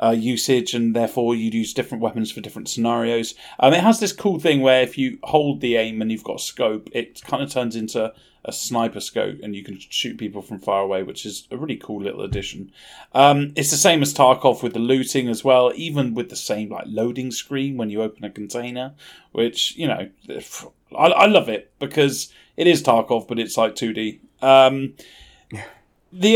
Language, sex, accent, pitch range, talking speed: English, male, British, 115-160 Hz, 210 wpm